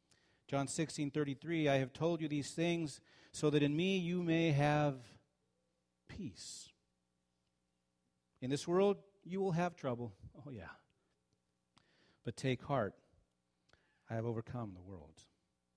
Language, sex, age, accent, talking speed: English, male, 40-59, American, 130 wpm